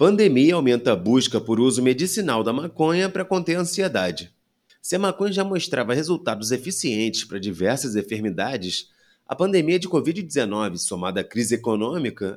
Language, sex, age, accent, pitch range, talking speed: Portuguese, male, 30-49, Brazilian, 115-180 Hz, 150 wpm